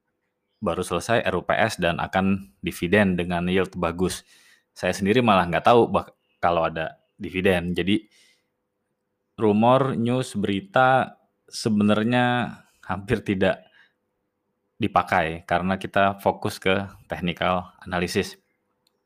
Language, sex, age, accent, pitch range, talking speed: Indonesian, male, 20-39, native, 90-105 Hz, 100 wpm